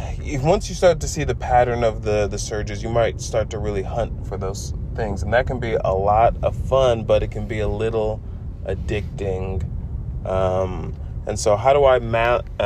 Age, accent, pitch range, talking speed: 20-39, American, 95-120 Hz, 200 wpm